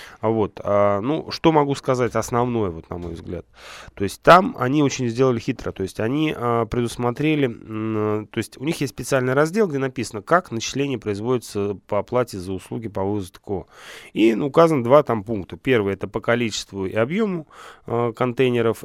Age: 20-39